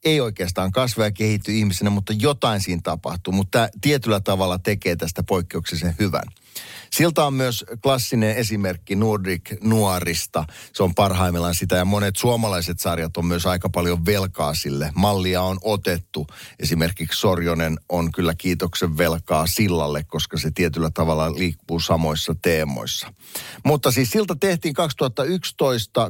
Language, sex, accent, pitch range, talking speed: Finnish, male, native, 85-110 Hz, 140 wpm